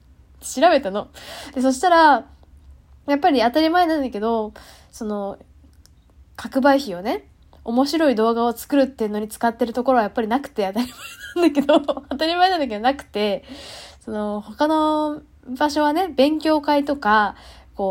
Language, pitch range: Japanese, 205-275 Hz